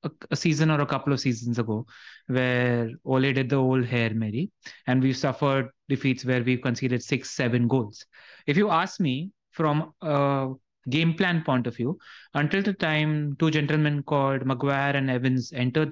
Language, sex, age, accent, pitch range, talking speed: English, male, 30-49, Indian, 135-175 Hz, 175 wpm